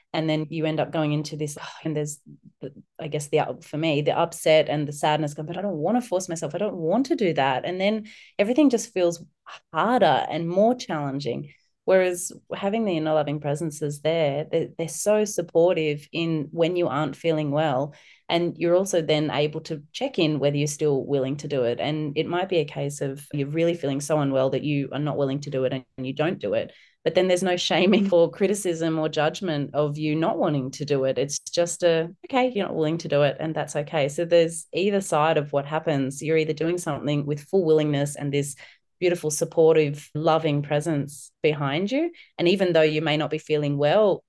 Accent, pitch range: Australian, 145-170 Hz